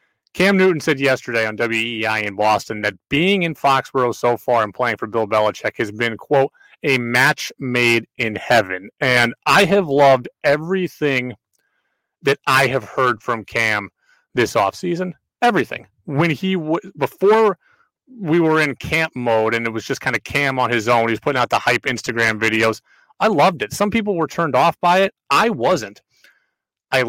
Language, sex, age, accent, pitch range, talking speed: English, male, 30-49, American, 125-185 Hz, 180 wpm